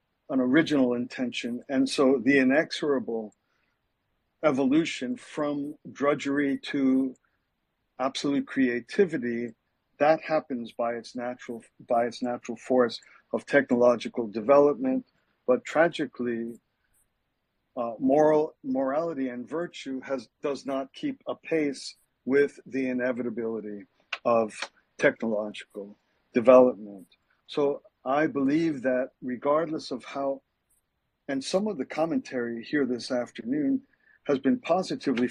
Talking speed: 105 wpm